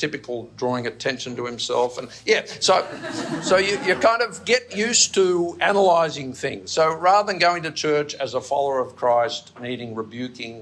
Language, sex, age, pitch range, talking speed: English, male, 50-69, 115-175 Hz, 175 wpm